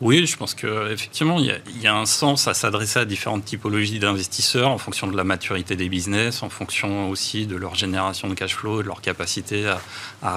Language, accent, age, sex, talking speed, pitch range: French, French, 30-49, male, 220 wpm, 100-125 Hz